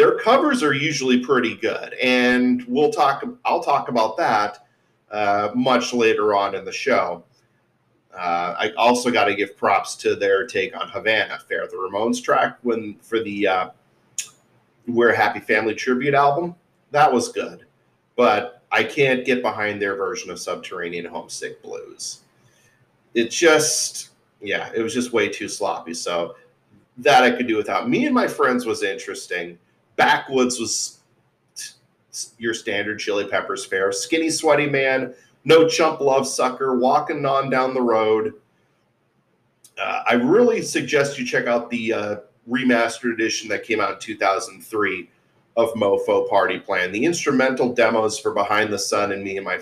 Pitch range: 110-160 Hz